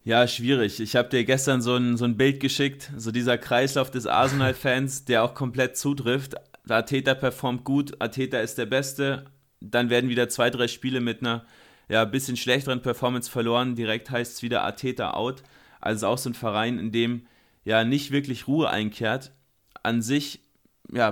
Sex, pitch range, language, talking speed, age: male, 115-125 Hz, German, 185 wpm, 20-39